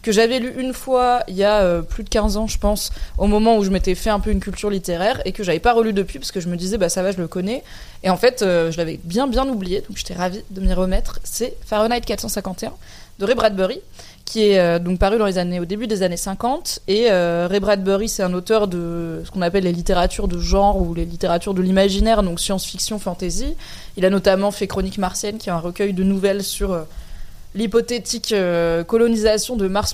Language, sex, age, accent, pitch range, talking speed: French, female, 20-39, French, 180-215 Hz, 230 wpm